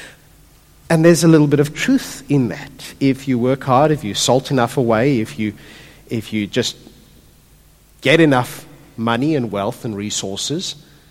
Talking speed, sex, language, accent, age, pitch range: 160 wpm, male, English, Australian, 50-69, 140-230 Hz